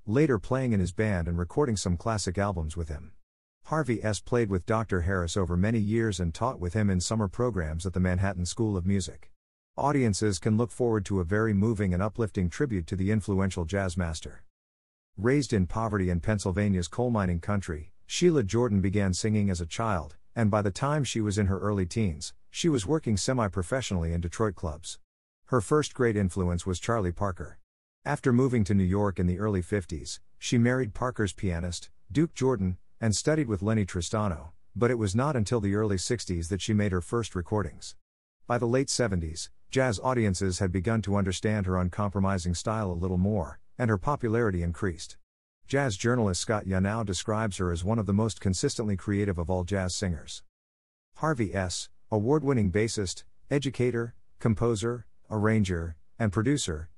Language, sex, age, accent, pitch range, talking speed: English, male, 50-69, American, 90-115 Hz, 180 wpm